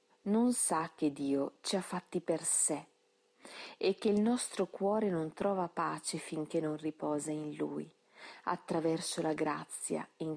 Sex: female